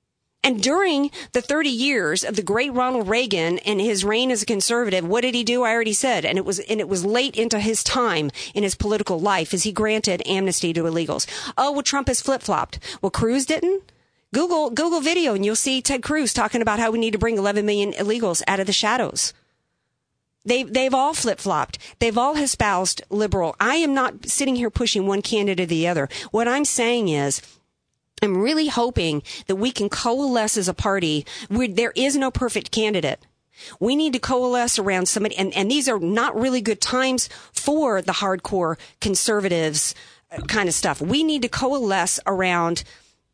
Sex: female